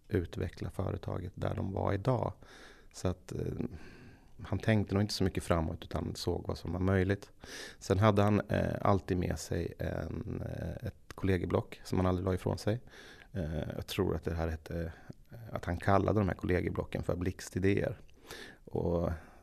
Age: 30-49